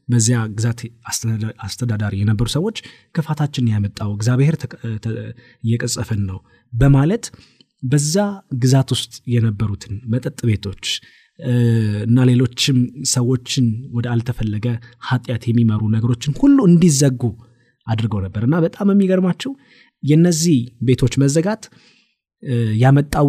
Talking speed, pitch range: 90 wpm, 110-145 Hz